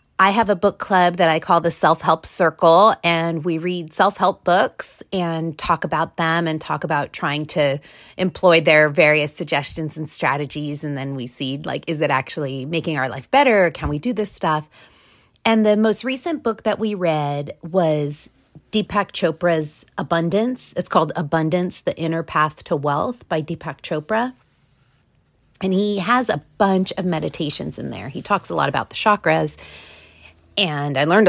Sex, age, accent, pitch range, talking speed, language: female, 30-49, American, 155-195 Hz, 175 wpm, English